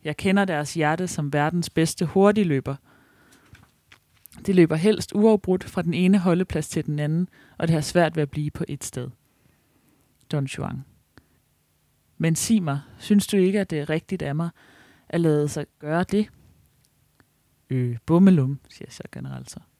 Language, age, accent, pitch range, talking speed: Danish, 30-49, native, 140-180 Hz, 165 wpm